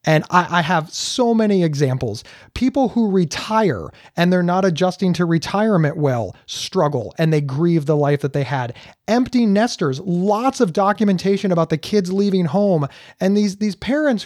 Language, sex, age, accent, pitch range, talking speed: English, male, 30-49, American, 165-220 Hz, 165 wpm